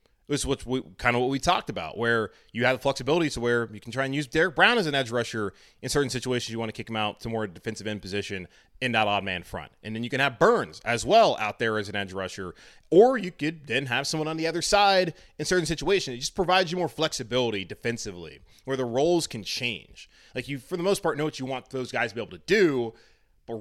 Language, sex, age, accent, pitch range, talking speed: English, male, 20-39, American, 100-130 Hz, 260 wpm